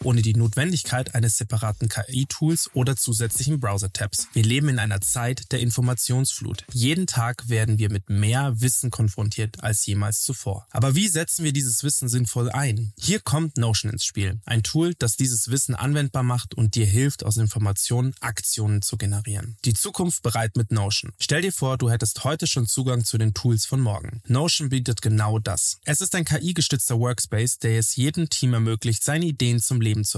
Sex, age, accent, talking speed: male, 20-39, German, 180 wpm